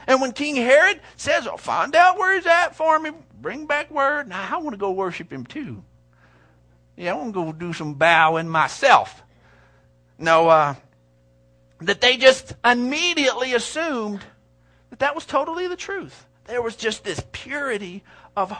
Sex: male